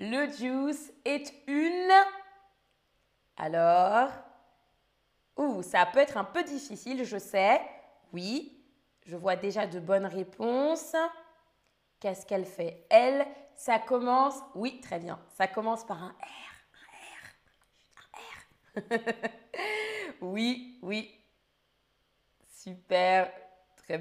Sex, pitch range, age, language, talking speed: female, 200-290 Hz, 20-39, French, 105 wpm